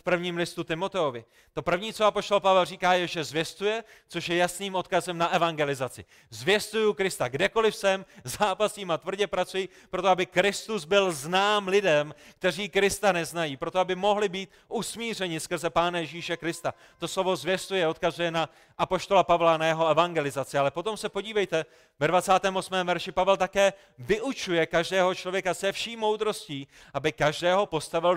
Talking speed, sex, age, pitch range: 155 wpm, male, 30-49, 155-190 Hz